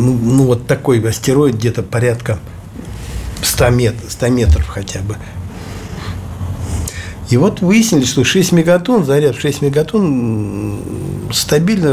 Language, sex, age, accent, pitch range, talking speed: Russian, male, 60-79, native, 110-145 Hz, 115 wpm